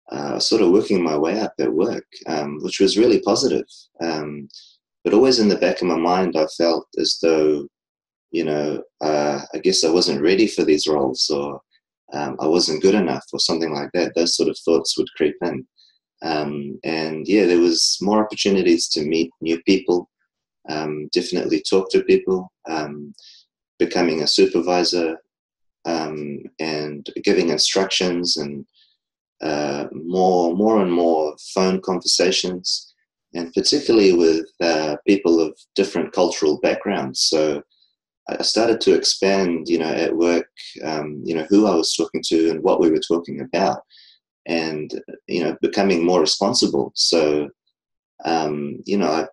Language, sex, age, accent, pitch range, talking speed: English, male, 30-49, Australian, 75-90 Hz, 160 wpm